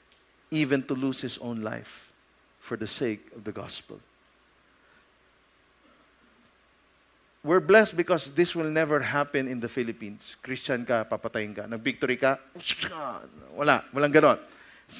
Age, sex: 50-69, male